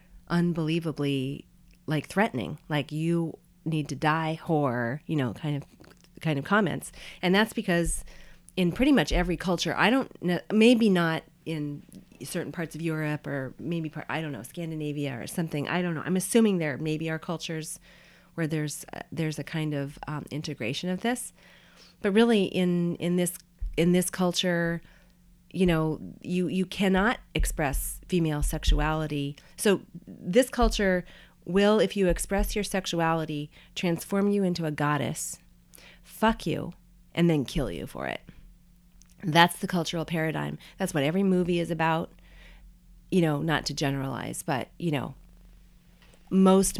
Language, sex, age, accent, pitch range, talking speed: English, female, 30-49, American, 150-185 Hz, 150 wpm